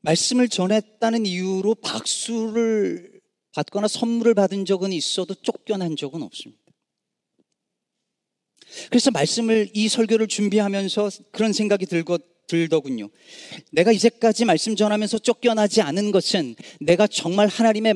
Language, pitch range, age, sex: Korean, 150-220 Hz, 40-59, male